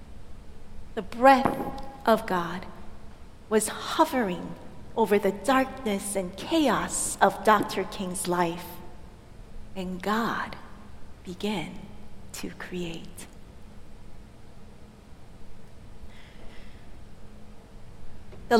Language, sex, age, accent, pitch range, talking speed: English, female, 40-59, American, 190-225 Hz, 70 wpm